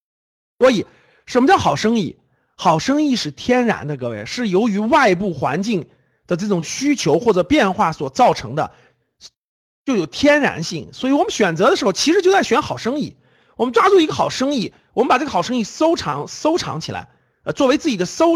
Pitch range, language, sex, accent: 180-295 Hz, Chinese, male, native